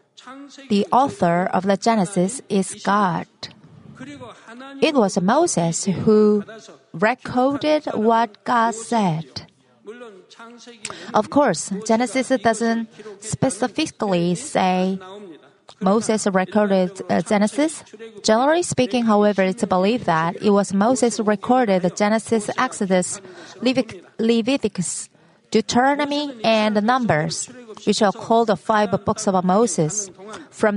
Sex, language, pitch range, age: female, Korean, 190-230 Hz, 30-49